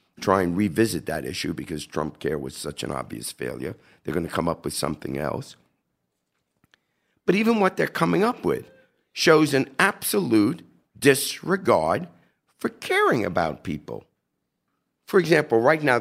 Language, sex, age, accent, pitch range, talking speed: English, male, 50-69, American, 85-120 Hz, 150 wpm